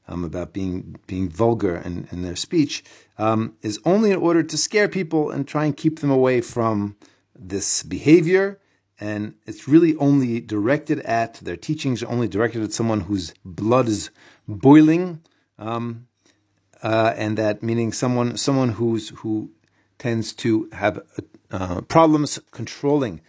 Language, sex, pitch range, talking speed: English, male, 105-145 Hz, 150 wpm